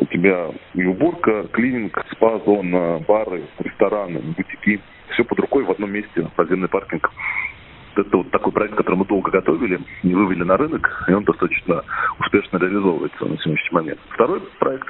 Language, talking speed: Russian, 150 wpm